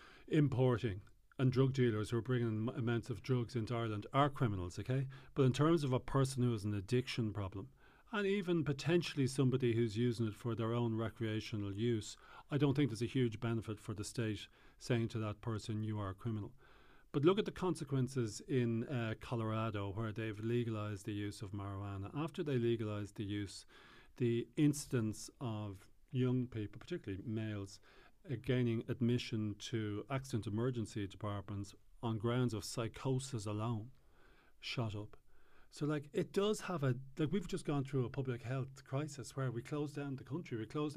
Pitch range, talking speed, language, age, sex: 110-140 Hz, 175 wpm, English, 40-59, male